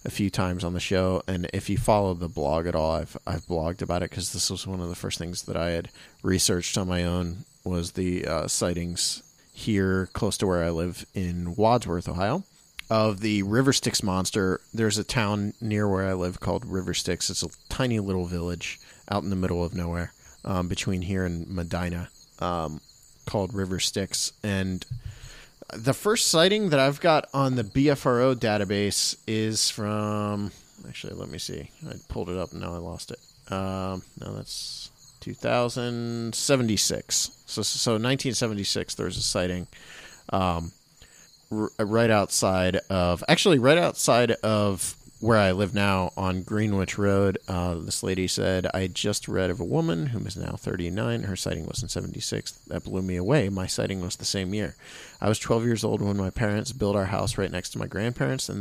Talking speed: 185 wpm